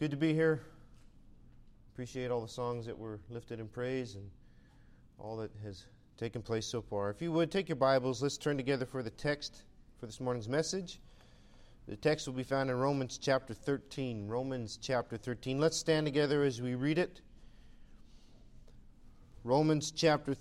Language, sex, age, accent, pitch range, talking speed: English, male, 40-59, American, 115-155 Hz, 170 wpm